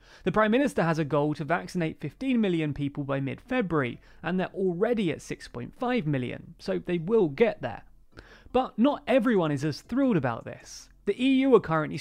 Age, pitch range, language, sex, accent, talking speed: 30-49, 140-225 Hz, English, male, British, 180 wpm